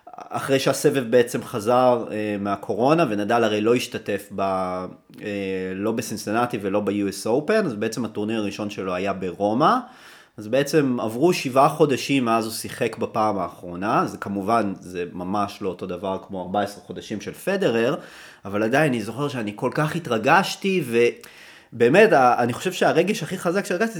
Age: 30-49